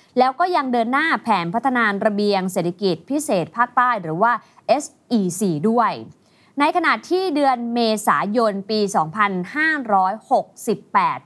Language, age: Thai, 20-39